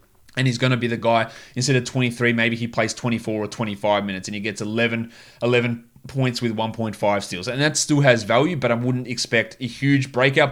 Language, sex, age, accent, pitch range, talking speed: English, male, 20-39, Australian, 110-130 Hz, 215 wpm